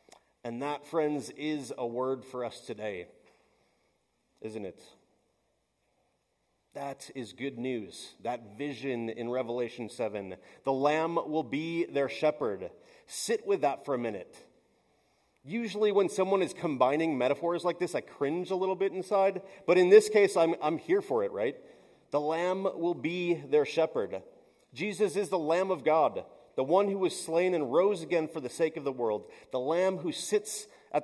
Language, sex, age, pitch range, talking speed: English, male, 30-49, 135-180 Hz, 170 wpm